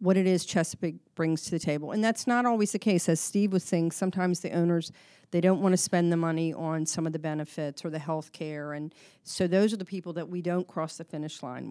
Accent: American